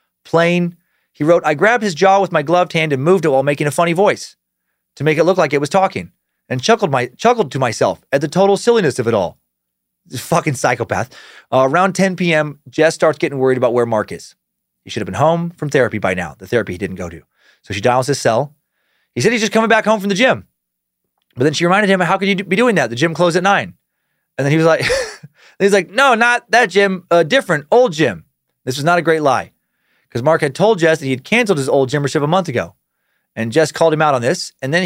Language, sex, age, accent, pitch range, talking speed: English, male, 30-49, American, 140-205 Hz, 255 wpm